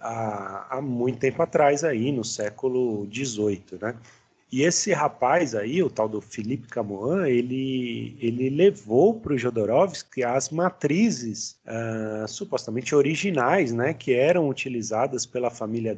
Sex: male